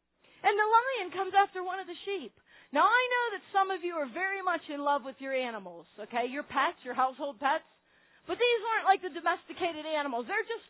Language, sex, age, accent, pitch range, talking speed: English, female, 40-59, American, 300-400 Hz, 220 wpm